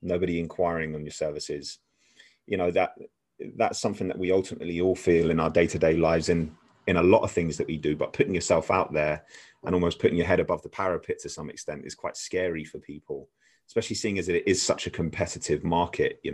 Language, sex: English, male